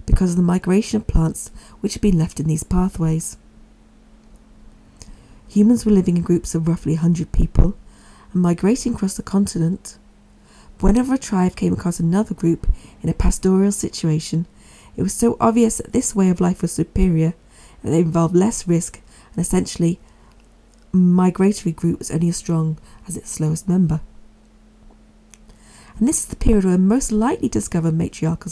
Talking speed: 165 wpm